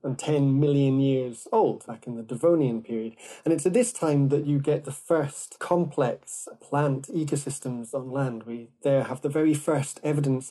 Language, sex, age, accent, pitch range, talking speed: English, male, 30-49, British, 130-155 Hz, 185 wpm